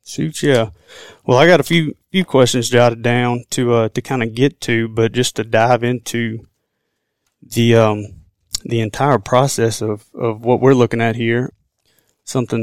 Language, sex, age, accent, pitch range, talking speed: English, male, 20-39, American, 115-125 Hz, 170 wpm